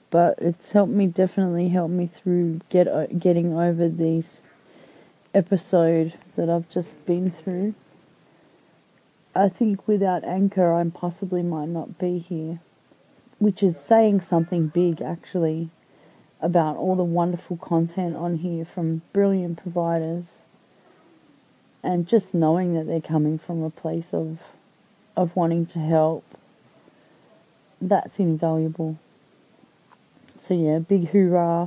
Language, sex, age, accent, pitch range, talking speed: English, female, 30-49, Australian, 165-185 Hz, 120 wpm